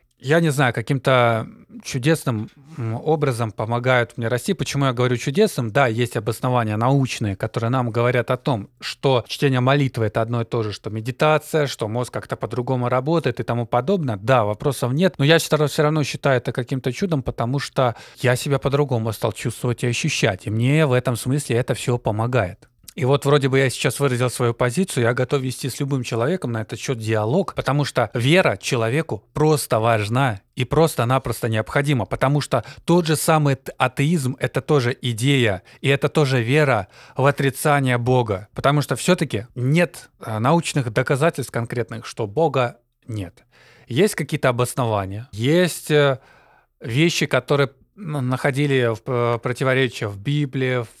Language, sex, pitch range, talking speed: Russian, male, 120-145 Hz, 160 wpm